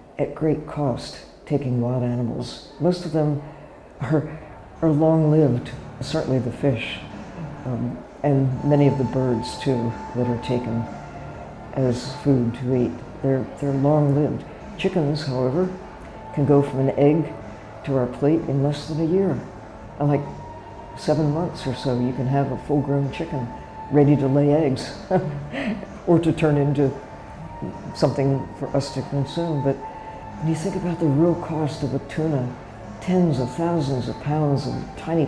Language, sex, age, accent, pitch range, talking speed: French, female, 60-79, American, 125-150 Hz, 155 wpm